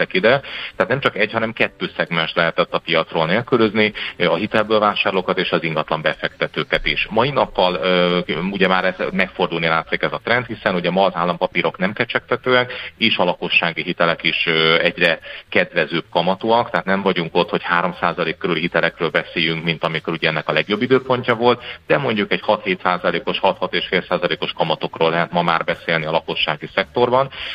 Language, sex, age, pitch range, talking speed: Hungarian, male, 40-59, 85-110 Hz, 160 wpm